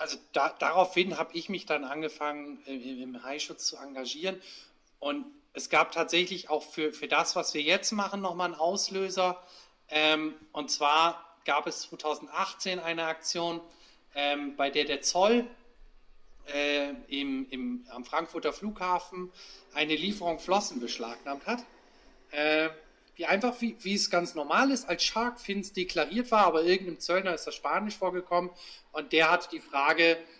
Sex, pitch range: male, 155-195 Hz